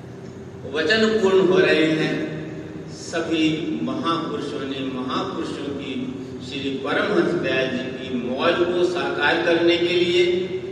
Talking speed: 120 wpm